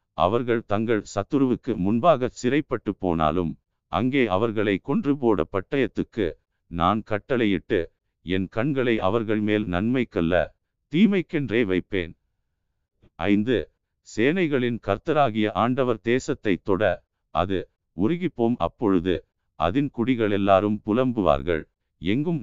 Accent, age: native, 50-69